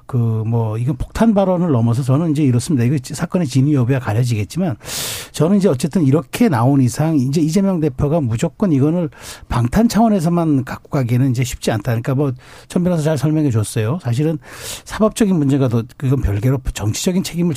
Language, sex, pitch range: Korean, male, 125-165 Hz